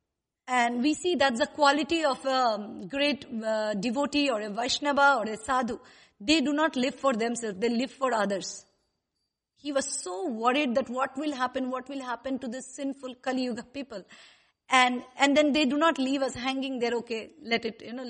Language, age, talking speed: English, 50-69, 195 wpm